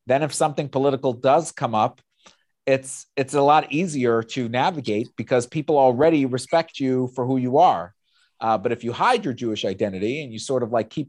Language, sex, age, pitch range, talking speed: English, male, 40-59, 120-150 Hz, 200 wpm